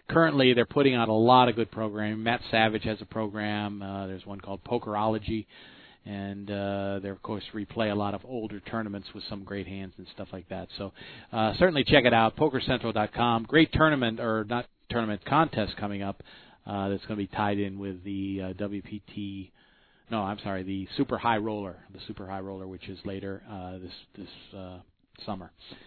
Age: 40-59